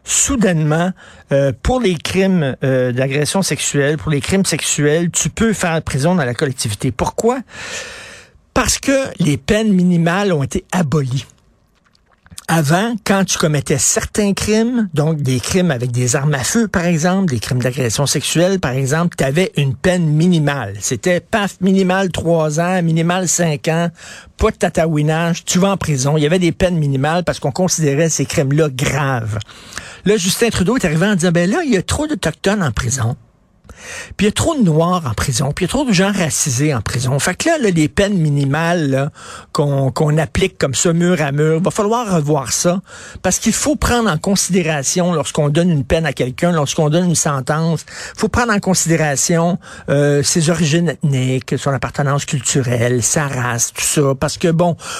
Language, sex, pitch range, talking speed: French, male, 145-185 Hz, 185 wpm